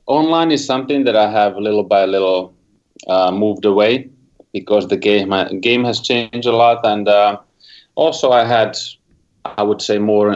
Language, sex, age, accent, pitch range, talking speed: English, male, 30-49, Finnish, 95-115 Hz, 170 wpm